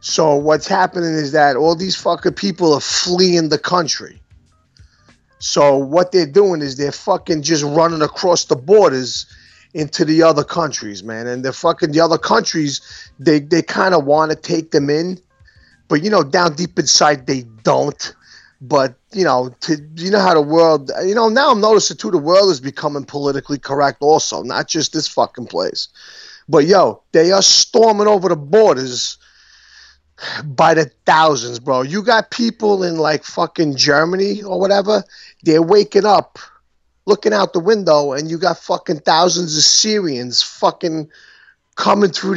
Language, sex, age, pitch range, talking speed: English, male, 30-49, 145-190 Hz, 165 wpm